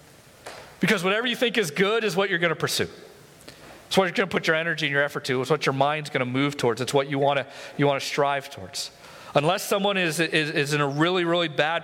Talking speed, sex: 265 wpm, male